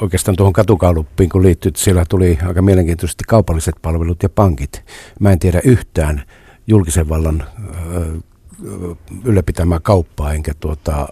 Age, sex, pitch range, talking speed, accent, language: 60-79, male, 85-105 Hz, 125 wpm, native, Finnish